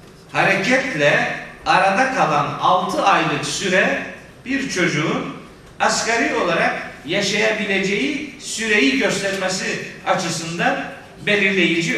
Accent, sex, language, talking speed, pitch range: native, male, Turkish, 75 wpm, 145-195 Hz